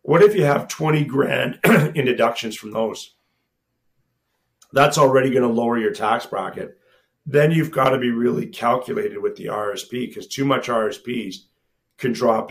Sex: male